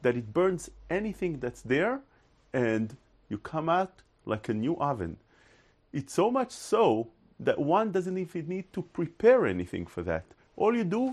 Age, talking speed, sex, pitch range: 40-59, 165 wpm, male, 115-165 Hz